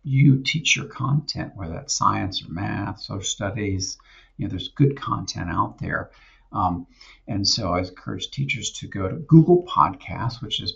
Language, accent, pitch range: English, American, 95-140 Hz